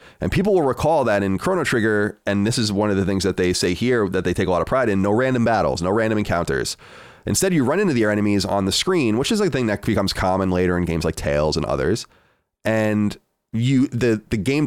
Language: English